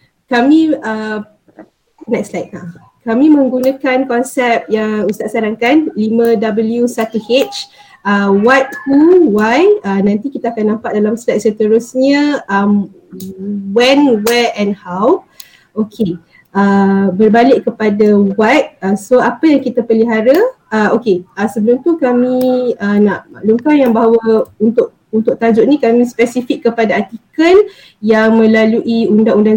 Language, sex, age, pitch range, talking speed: Malay, female, 20-39, 210-255 Hz, 125 wpm